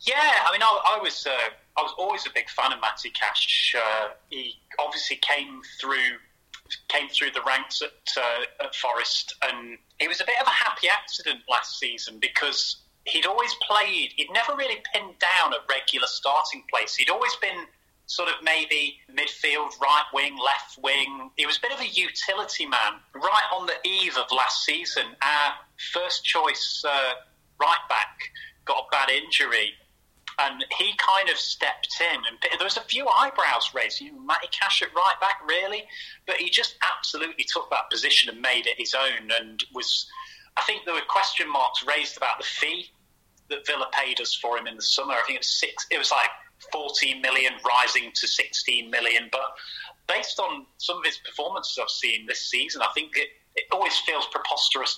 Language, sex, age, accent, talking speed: English, male, 30-49, British, 190 wpm